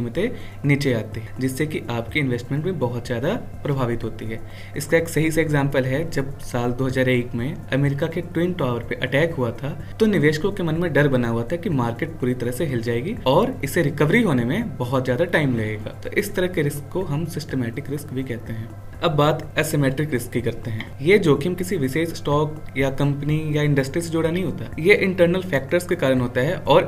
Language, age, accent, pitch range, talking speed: English, 20-39, Indian, 125-165 Hz, 190 wpm